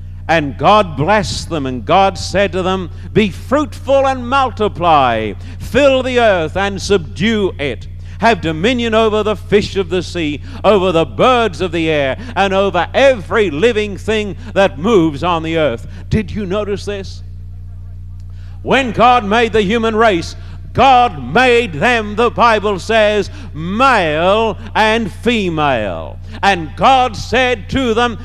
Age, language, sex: 60-79, English, male